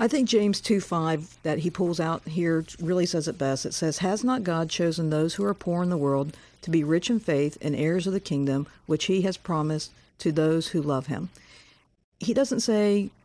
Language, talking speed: English, 220 wpm